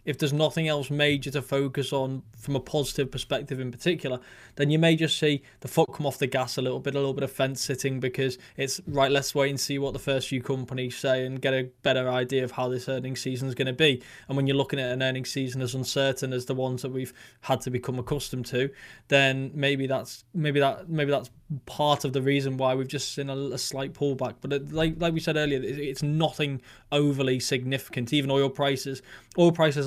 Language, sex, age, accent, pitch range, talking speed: English, male, 20-39, British, 130-145 Hz, 230 wpm